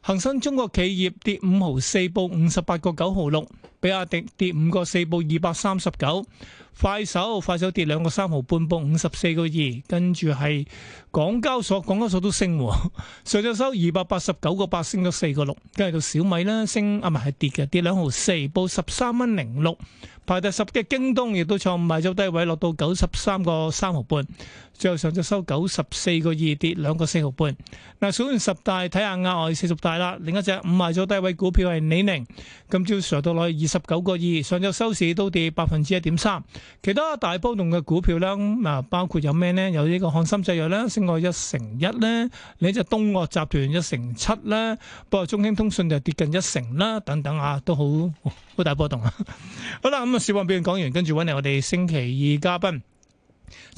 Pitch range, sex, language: 160-195 Hz, male, Chinese